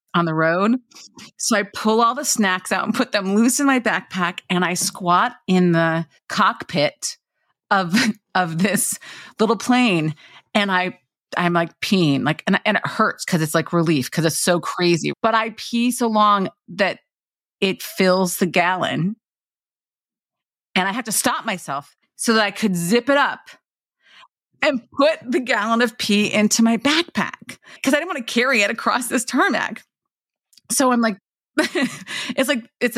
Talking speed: 170 wpm